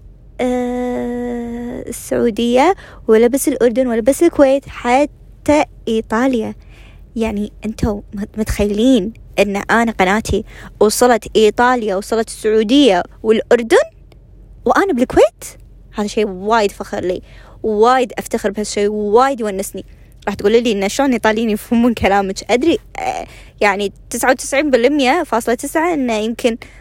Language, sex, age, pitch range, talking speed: Arabic, female, 20-39, 220-270 Hz, 115 wpm